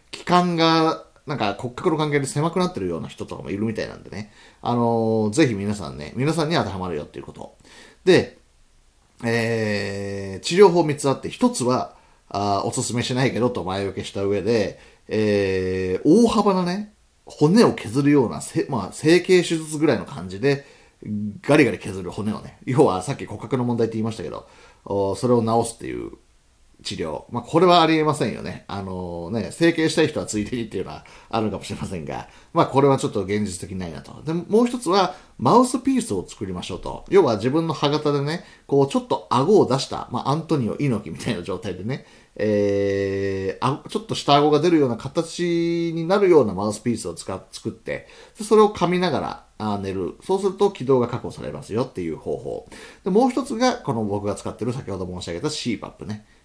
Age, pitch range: 40-59, 105-165 Hz